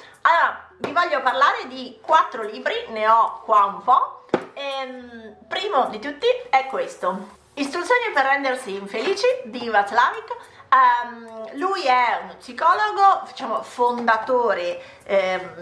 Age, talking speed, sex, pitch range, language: 30-49, 125 wpm, female, 195-255 Hz, Italian